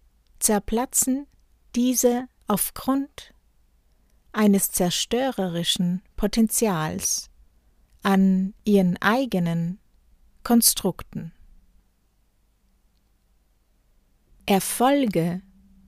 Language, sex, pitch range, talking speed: German, female, 180-220 Hz, 40 wpm